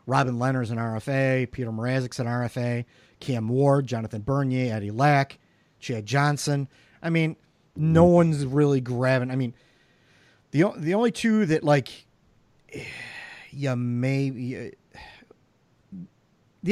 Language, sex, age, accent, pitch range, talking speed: English, male, 40-59, American, 115-140 Hz, 110 wpm